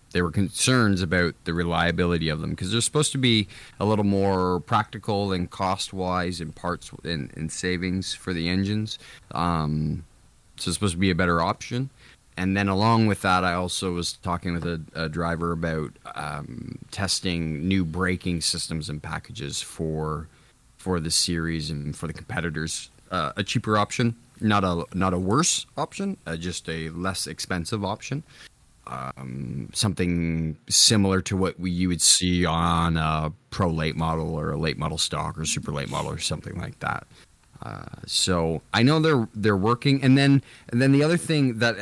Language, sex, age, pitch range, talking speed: English, male, 20-39, 85-110 Hz, 175 wpm